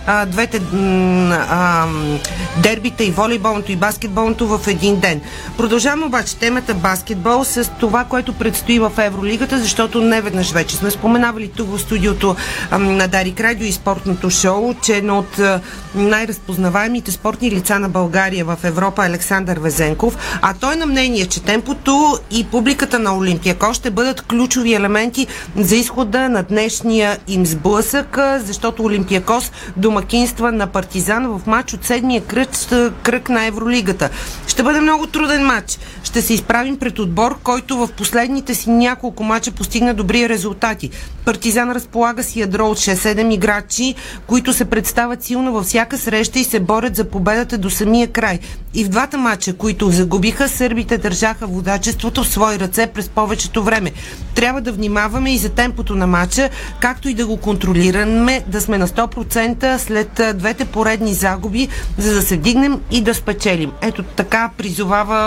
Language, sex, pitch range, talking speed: Bulgarian, female, 195-240 Hz, 155 wpm